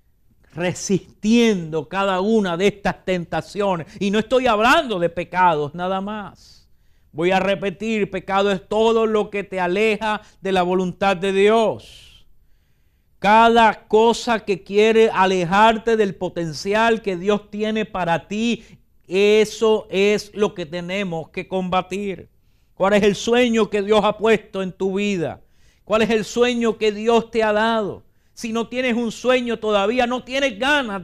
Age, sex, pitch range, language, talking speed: 50-69, male, 180-225 Hz, English, 150 wpm